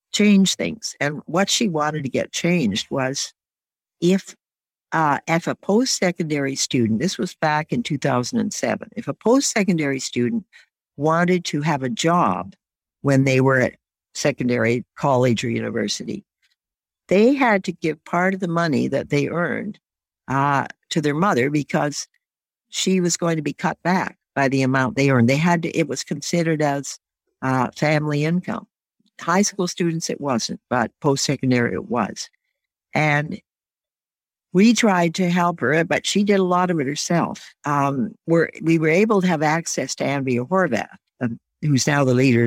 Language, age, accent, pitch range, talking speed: English, 60-79, American, 135-180 Hz, 165 wpm